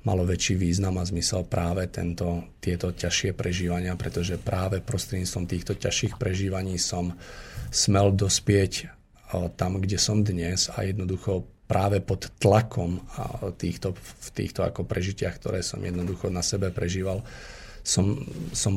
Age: 40-59